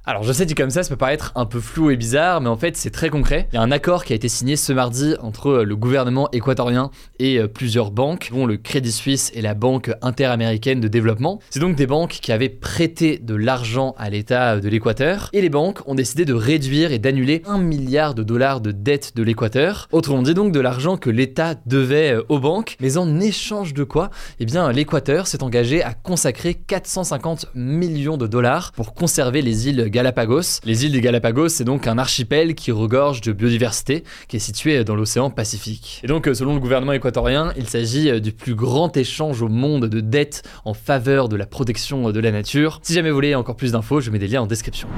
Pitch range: 115-150 Hz